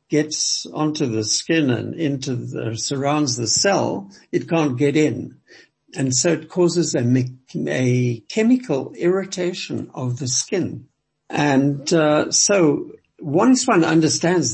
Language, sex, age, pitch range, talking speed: English, male, 60-79, 130-165 Hz, 130 wpm